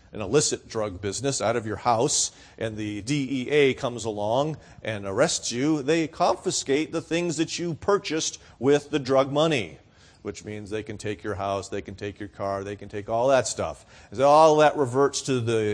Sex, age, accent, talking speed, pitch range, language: male, 40-59, American, 190 wpm, 105-170 Hz, English